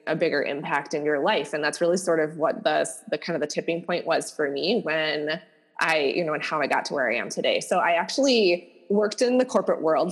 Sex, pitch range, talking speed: female, 165-215 Hz, 255 wpm